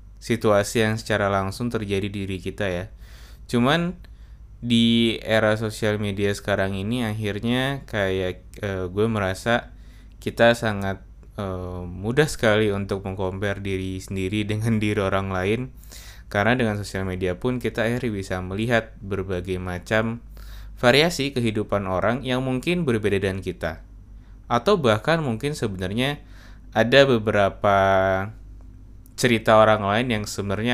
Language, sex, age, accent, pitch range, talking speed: Indonesian, male, 20-39, native, 95-115 Hz, 125 wpm